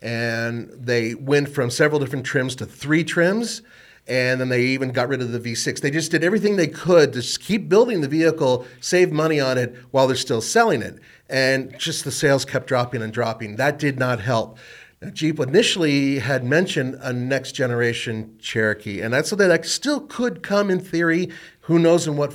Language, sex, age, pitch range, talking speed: English, male, 40-59, 120-155 Hz, 190 wpm